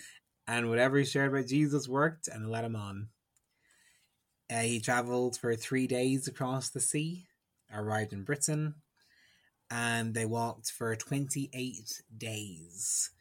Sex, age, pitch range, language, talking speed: male, 20-39, 105-130 Hz, English, 140 wpm